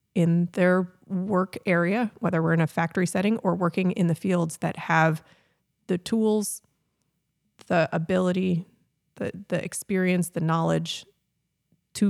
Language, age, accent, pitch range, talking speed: English, 30-49, American, 165-190 Hz, 135 wpm